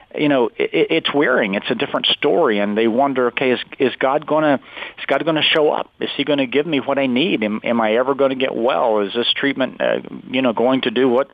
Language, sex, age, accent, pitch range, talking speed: English, male, 40-59, American, 120-150 Hz, 250 wpm